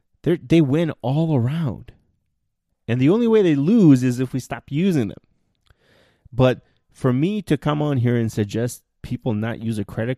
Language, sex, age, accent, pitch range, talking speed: English, male, 30-49, American, 105-130 Hz, 185 wpm